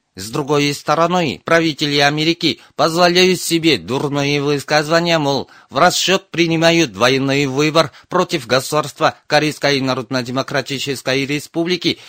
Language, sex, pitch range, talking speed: Russian, male, 140-170 Hz, 100 wpm